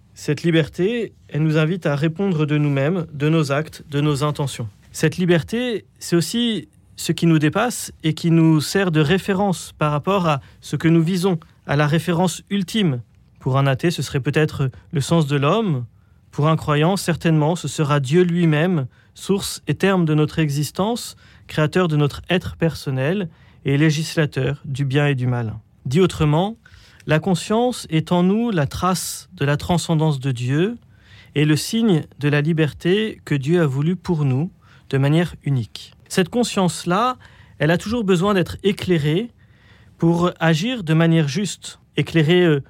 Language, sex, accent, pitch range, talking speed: French, male, French, 145-180 Hz, 165 wpm